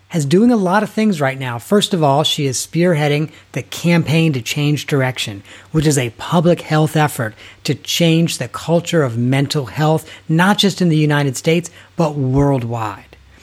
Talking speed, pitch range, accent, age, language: 180 wpm, 130-160 Hz, American, 40-59, English